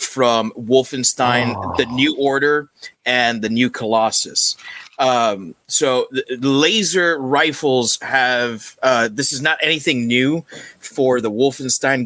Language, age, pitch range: English, 30-49, 115-140 Hz